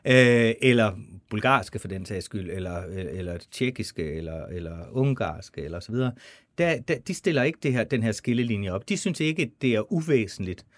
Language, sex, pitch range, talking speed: Danish, male, 105-130 Hz, 175 wpm